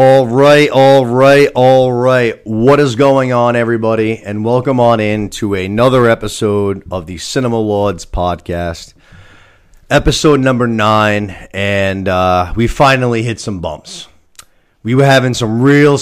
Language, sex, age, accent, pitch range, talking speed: English, male, 30-49, American, 100-125 Hz, 140 wpm